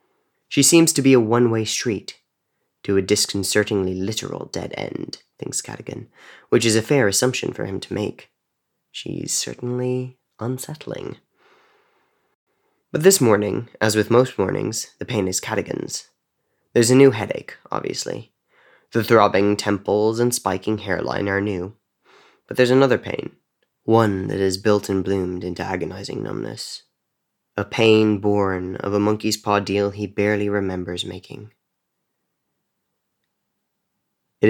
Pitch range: 100-125 Hz